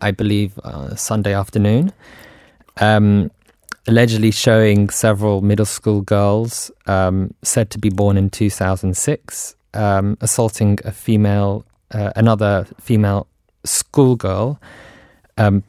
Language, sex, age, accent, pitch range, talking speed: English, male, 20-39, British, 100-115 Hz, 105 wpm